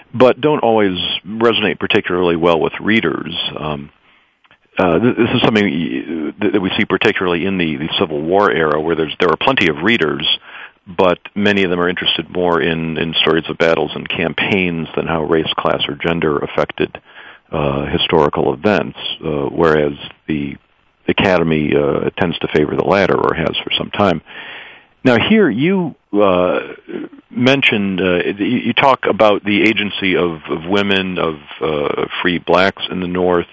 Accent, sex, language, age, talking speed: American, male, English, 50-69, 160 wpm